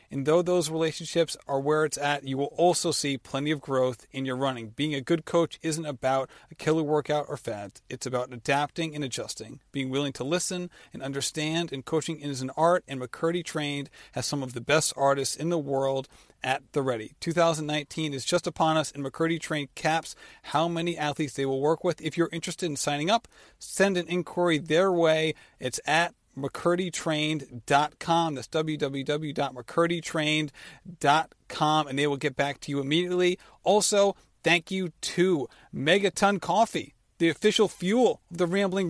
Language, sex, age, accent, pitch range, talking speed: English, male, 40-59, American, 140-170 Hz, 175 wpm